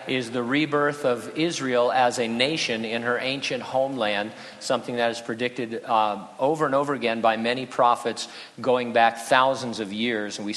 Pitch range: 115-145 Hz